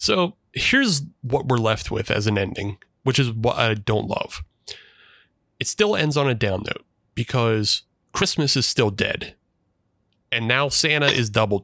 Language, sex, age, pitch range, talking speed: English, male, 30-49, 110-140 Hz, 165 wpm